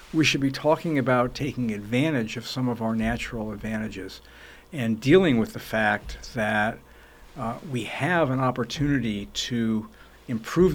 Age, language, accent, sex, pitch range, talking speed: 60-79, English, American, male, 110-135 Hz, 145 wpm